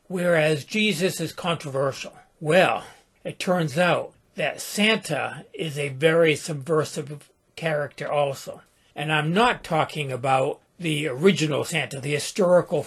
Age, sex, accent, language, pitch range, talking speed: 60-79, male, American, English, 145-175 Hz, 120 wpm